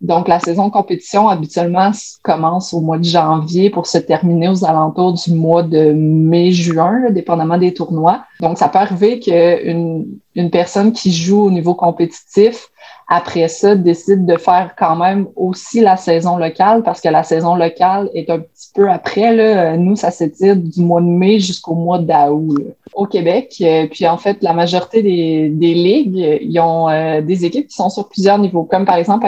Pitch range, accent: 165-195 Hz, Canadian